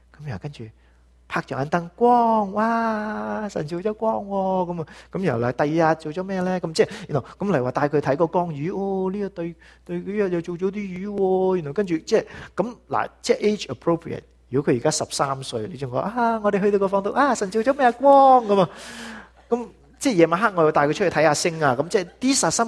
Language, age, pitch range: English, 30-49, 120-190 Hz